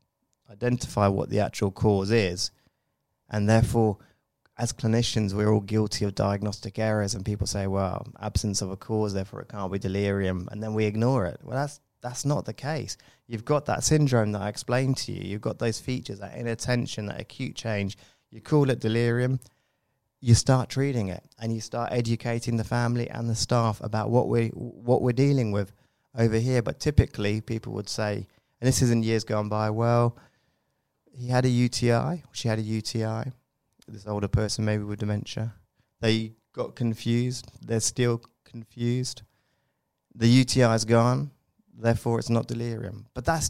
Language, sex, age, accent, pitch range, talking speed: English, male, 20-39, British, 105-125 Hz, 175 wpm